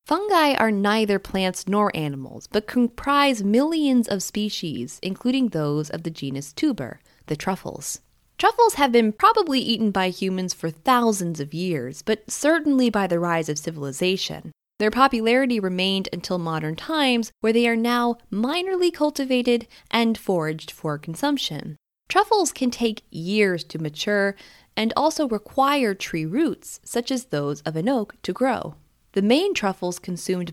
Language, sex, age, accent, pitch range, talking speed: English, female, 10-29, American, 170-250 Hz, 150 wpm